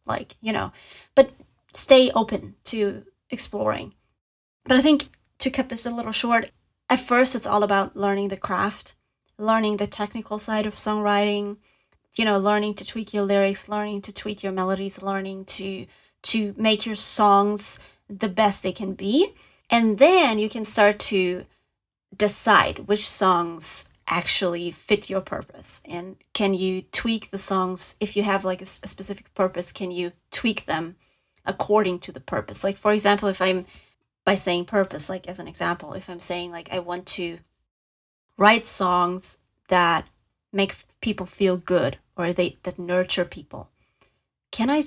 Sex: female